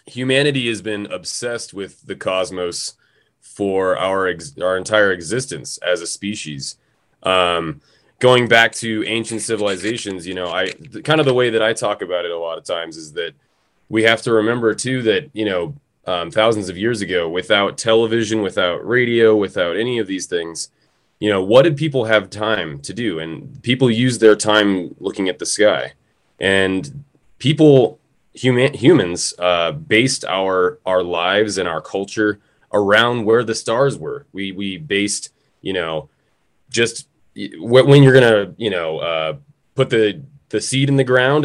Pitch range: 95-125 Hz